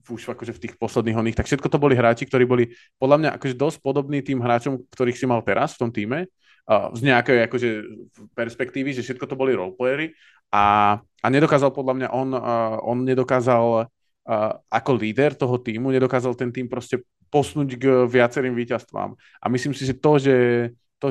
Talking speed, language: 190 wpm, Slovak